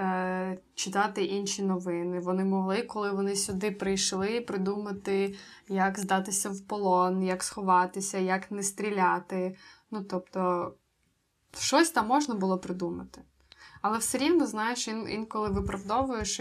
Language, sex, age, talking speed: Ukrainian, female, 20-39, 115 wpm